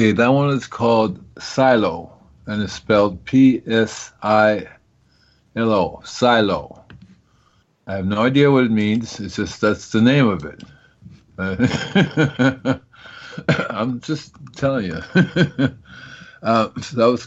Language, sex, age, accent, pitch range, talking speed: English, male, 50-69, American, 105-125 Hz, 115 wpm